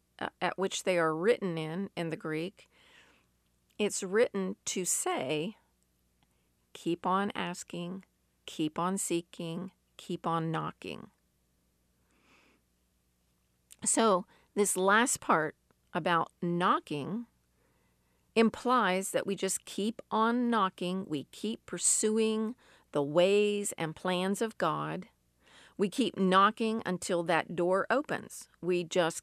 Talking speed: 110 wpm